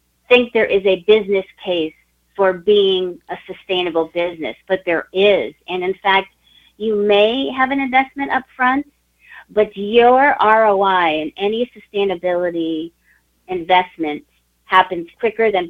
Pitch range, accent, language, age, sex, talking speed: 165-205 Hz, American, English, 40-59, female, 130 wpm